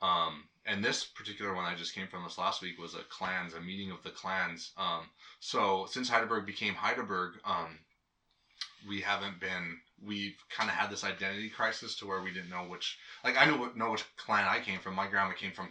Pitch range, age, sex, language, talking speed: 90-100 Hz, 20-39, male, English, 220 wpm